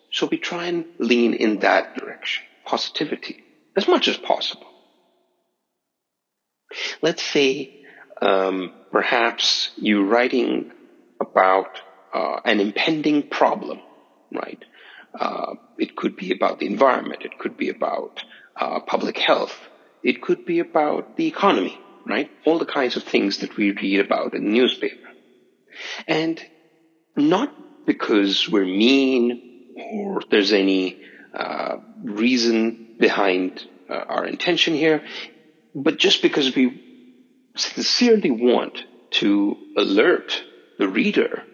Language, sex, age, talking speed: English, male, 50-69, 120 wpm